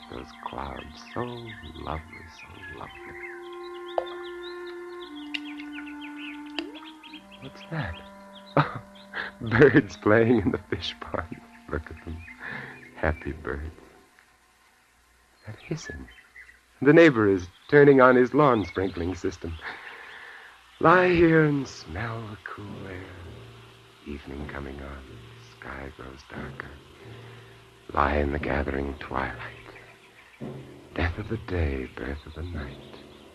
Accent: American